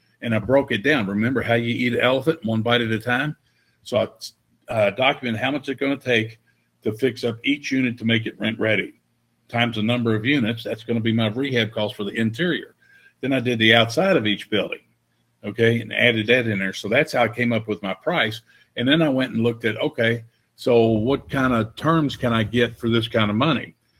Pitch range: 110-125 Hz